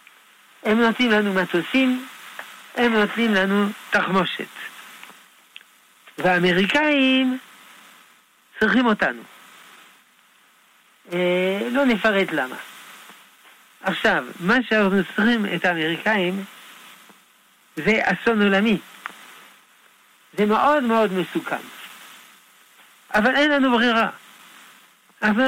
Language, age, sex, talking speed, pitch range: Hebrew, 60-79, male, 80 wpm, 180-230 Hz